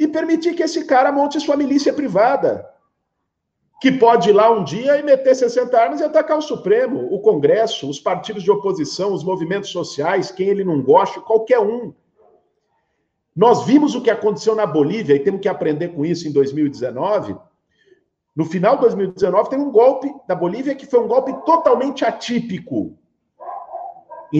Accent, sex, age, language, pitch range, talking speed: Brazilian, male, 50-69, Portuguese, 170-285 Hz, 170 wpm